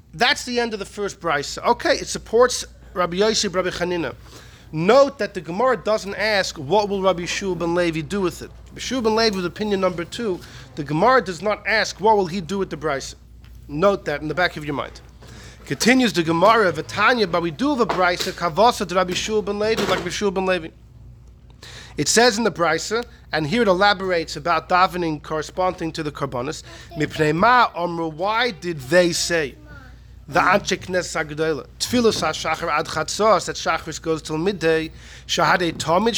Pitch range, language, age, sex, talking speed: 160-215 Hz, English, 40-59, male, 175 wpm